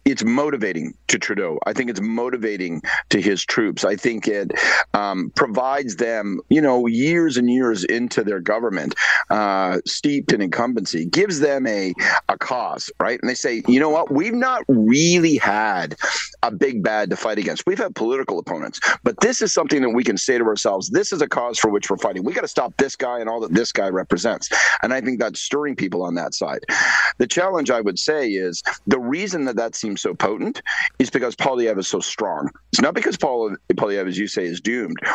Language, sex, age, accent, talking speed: English, male, 50-69, American, 210 wpm